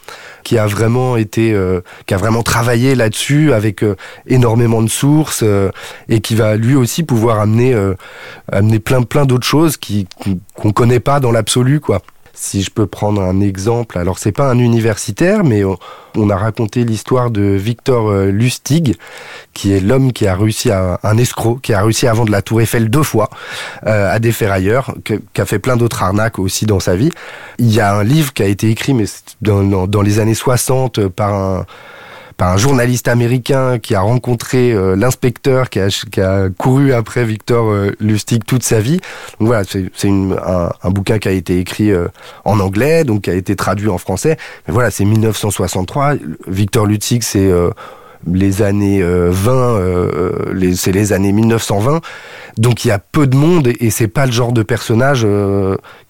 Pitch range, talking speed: 100-125 Hz, 195 wpm